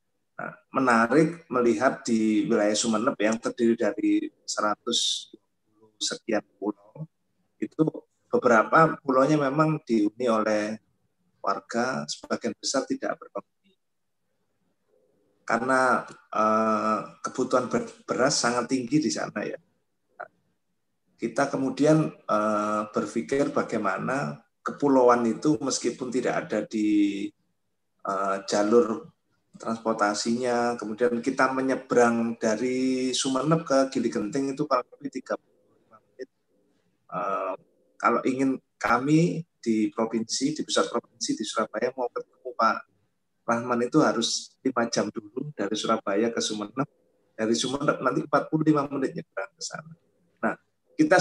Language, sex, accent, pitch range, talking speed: Indonesian, male, native, 115-150 Hz, 110 wpm